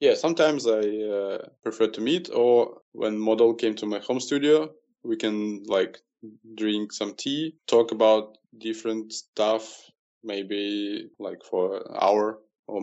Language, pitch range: English, 105-120 Hz